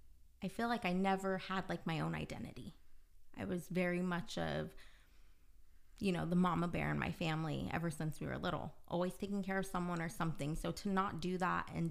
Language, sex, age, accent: English, female, 20-39, American